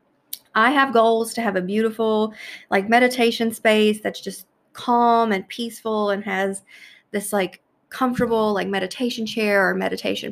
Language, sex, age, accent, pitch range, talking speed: English, female, 20-39, American, 185-225 Hz, 145 wpm